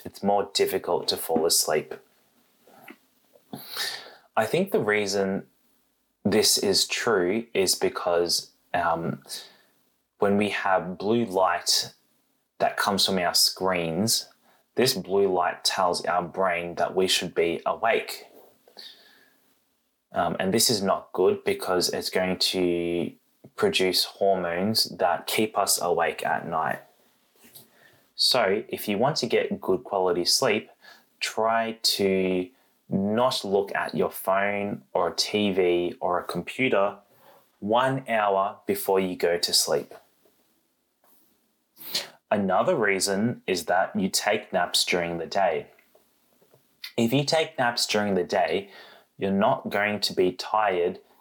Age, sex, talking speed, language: 20-39, male, 125 wpm, English